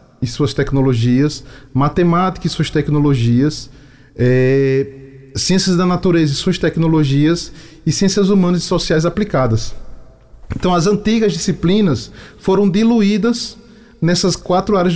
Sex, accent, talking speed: male, Brazilian, 110 wpm